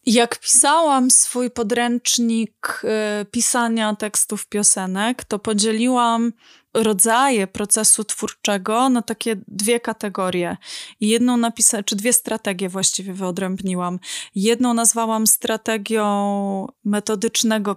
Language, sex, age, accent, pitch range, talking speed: Polish, female, 20-39, native, 210-235 Hz, 100 wpm